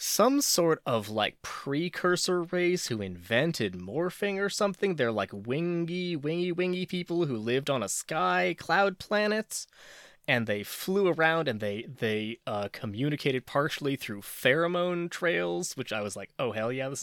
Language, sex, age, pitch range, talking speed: English, male, 20-39, 105-165 Hz, 160 wpm